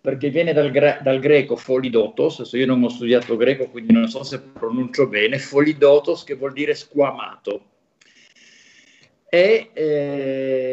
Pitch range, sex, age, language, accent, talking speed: 120-150 Hz, male, 50-69, Italian, native, 140 wpm